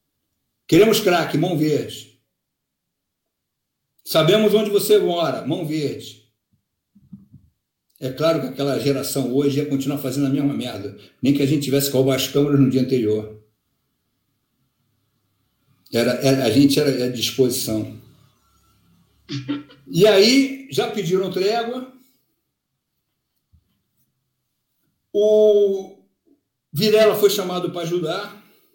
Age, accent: 60-79, Brazilian